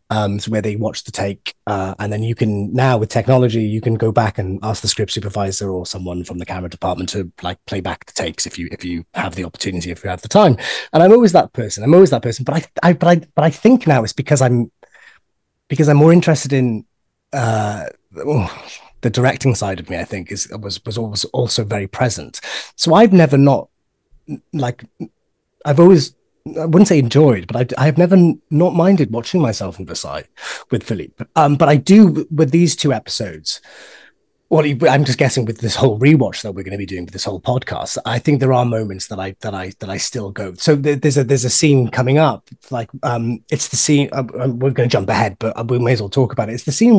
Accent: British